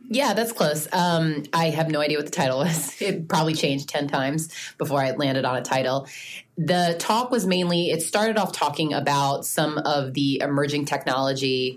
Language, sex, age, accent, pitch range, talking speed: English, female, 20-39, American, 140-170 Hz, 190 wpm